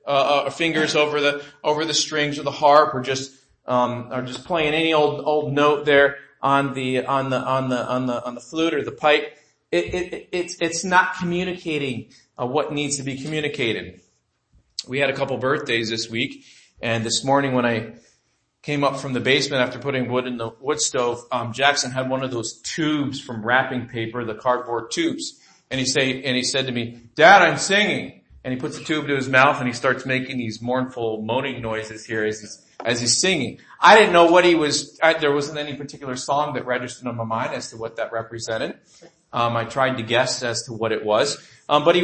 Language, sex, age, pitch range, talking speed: English, male, 40-59, 125-155 Hz, 220 wpm